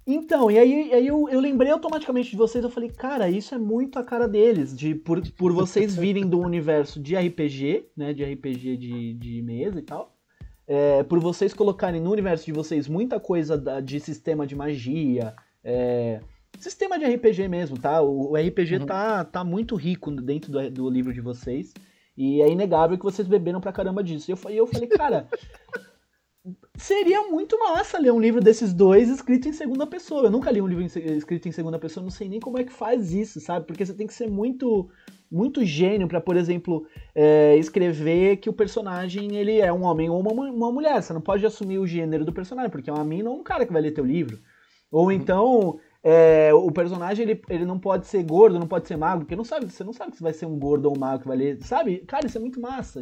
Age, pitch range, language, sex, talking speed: 20-39, 155-225 Hz, Portuguese, male, 225 wpm